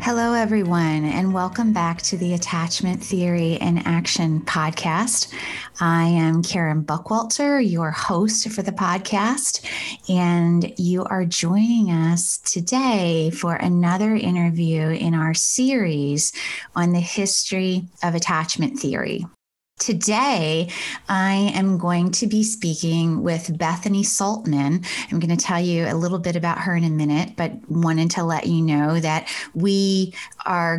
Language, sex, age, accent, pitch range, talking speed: English, female, 20-39, American, 160-190 Hz, 140 wpm